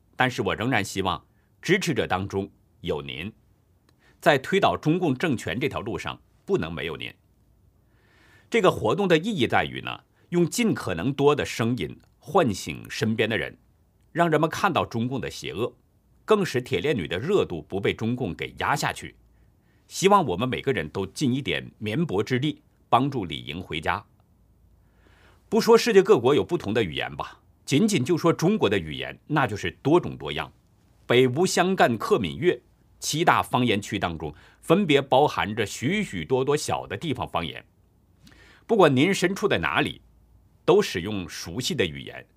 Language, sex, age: Chinese, male, 50-69